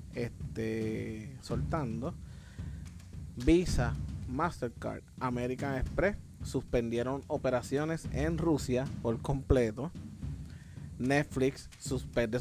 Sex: male